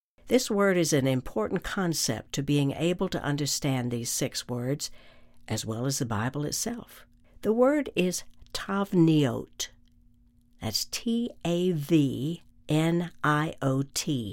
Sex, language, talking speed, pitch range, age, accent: female, English, 110 wpm, 120-180 Hz, 60-79, American